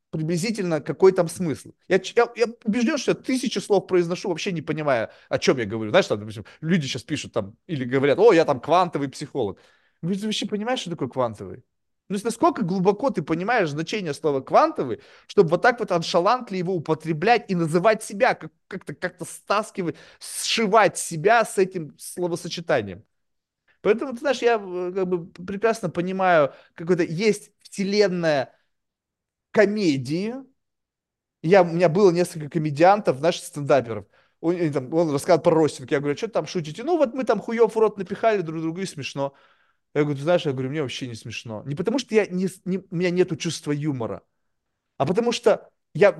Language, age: Russian, 20-39